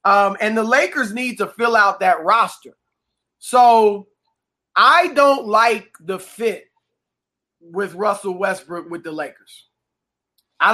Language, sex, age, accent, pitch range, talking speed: English, male, 20-39, American, 190-245 Hz, 130 wpm